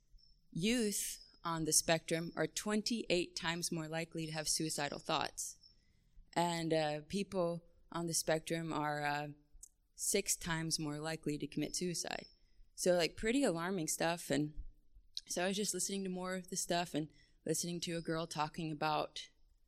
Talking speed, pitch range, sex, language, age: 155 wpm, 155-190 Hz, female, English, 20-39